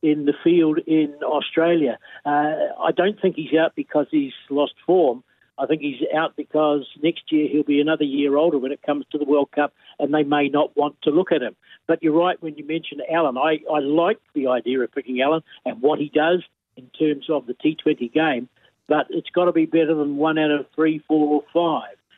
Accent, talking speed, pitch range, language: Australian, 220 wpm, 145-165 Hz, English